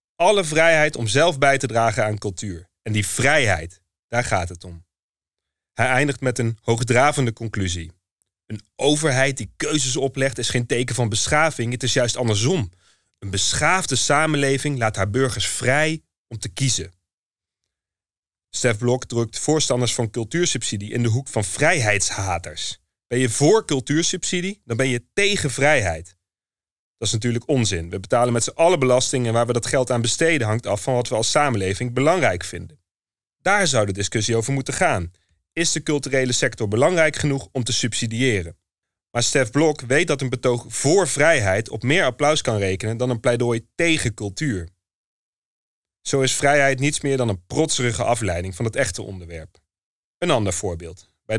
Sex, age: male, 30-49